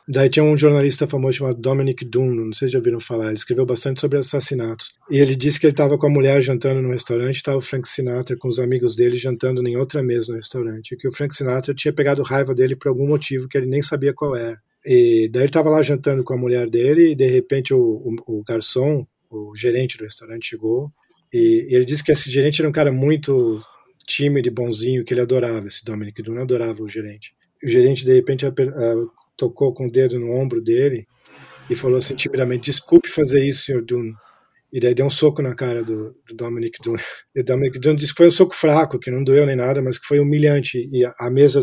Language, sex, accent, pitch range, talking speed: Portuguese, male, Brazilian, 125-150 Hz, 230 wpm